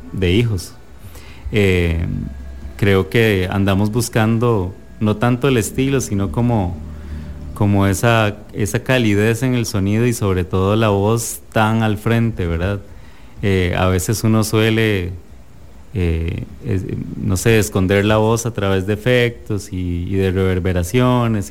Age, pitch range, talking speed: 30-49, 90-110 Hz, 140 wpm